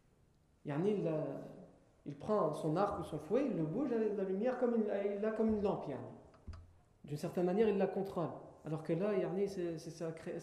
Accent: French